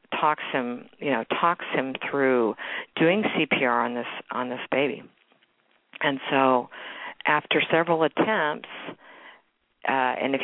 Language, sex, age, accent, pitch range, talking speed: English, female, 50-69, American, 125-155 Hz, 125 wpm